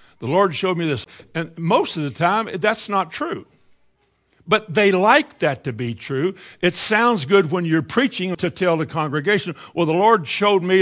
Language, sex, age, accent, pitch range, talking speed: English, male, 60-79, American, 125-170 Hz, 195 wpm